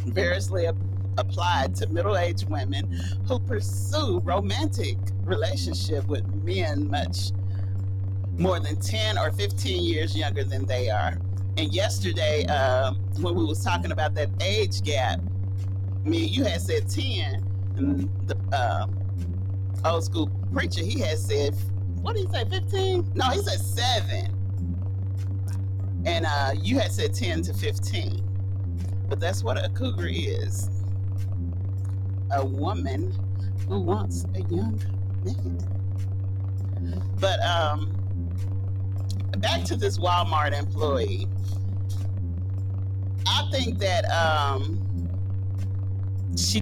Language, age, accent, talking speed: English, 40-59, American, 115 wpm